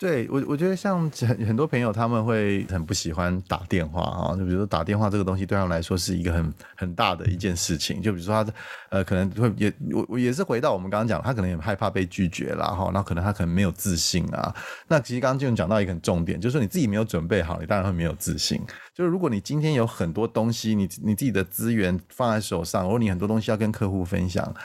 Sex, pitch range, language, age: male, 90-115 Hz, Chinese, 30-49